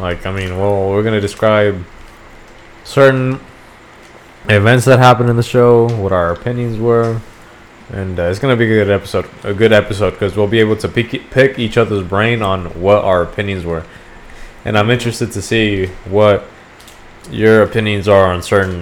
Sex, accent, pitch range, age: male, American, 95-115 Hz, 20-39